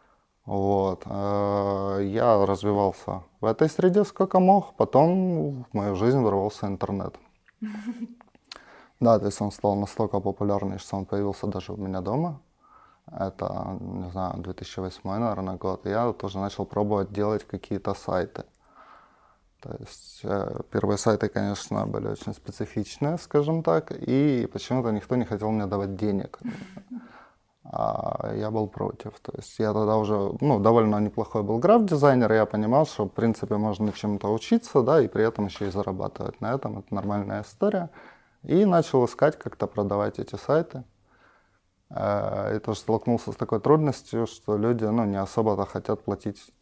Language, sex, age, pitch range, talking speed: Russian, male, 20-39, 100-130 Hz, 150 wpm